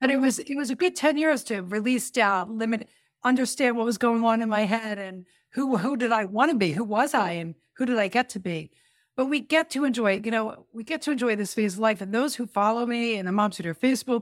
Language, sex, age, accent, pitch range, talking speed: English, female, 60-79, American, 205-260 Hz, 270 wpm